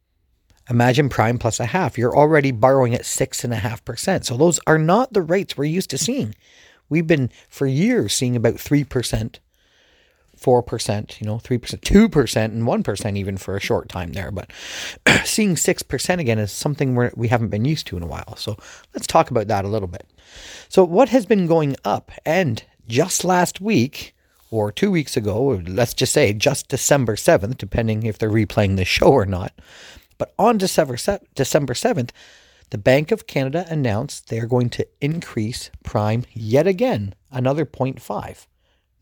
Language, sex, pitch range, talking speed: English, male, 110-155 Hz, 175 wpm